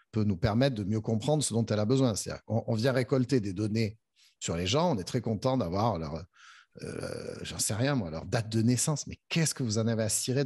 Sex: male